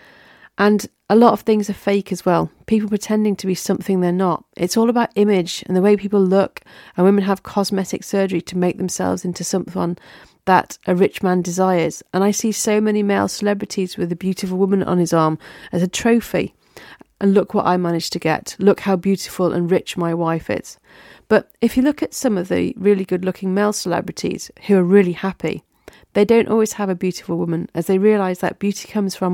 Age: 40-59